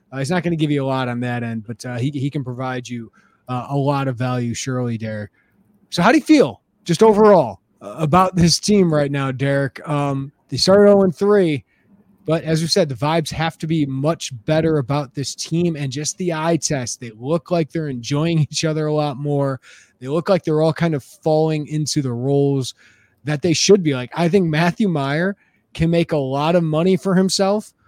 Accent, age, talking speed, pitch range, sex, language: American, 20-39, 215 wpm, 135-165 Hz, male, English